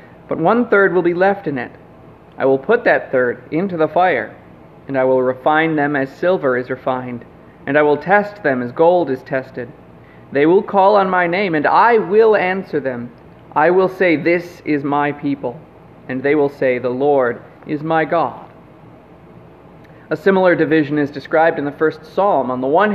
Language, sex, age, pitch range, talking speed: English, male, 30-49, 135-185 Hz, 190 wpm